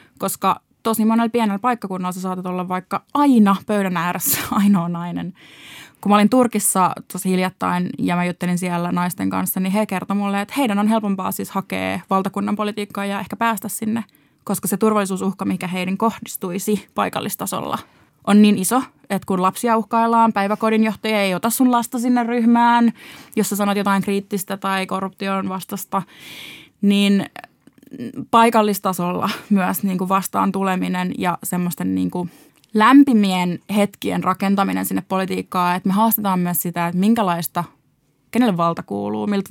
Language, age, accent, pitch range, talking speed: Finnish, 20-39, native, 180-215 Hz, 150 wpm